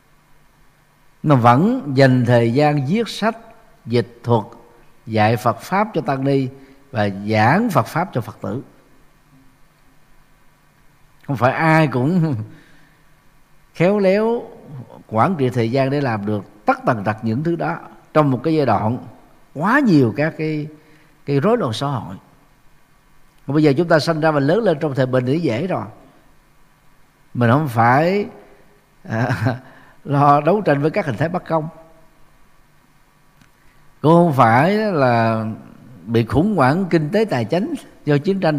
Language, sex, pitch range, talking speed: Vietnamese, male, 125-160 Hz, 155 wpm